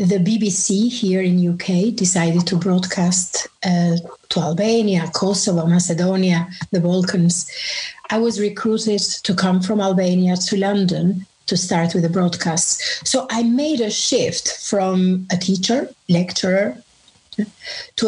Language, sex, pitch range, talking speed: English, female, 180-220 Hz, 130 wpm